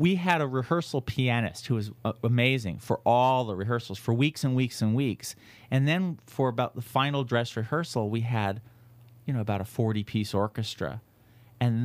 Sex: male